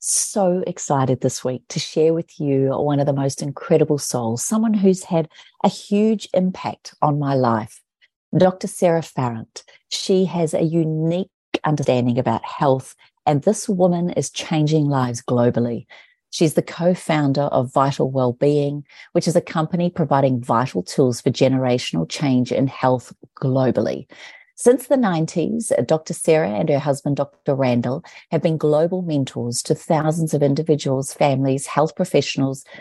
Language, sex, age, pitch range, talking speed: English, female, 40-59, 130-170 Hz, 150 wpm